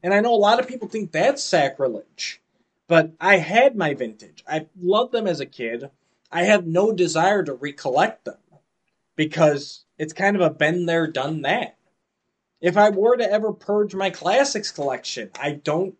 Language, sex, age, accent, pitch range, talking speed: English, male, 20-39, American, 130-190 Hz, 180 wpm